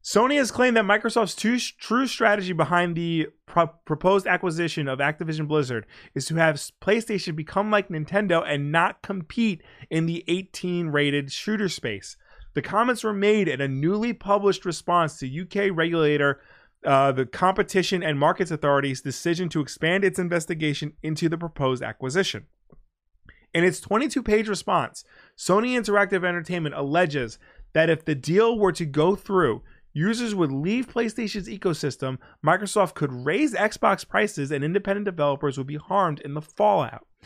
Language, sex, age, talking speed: English, male, 20-39, 145 wpm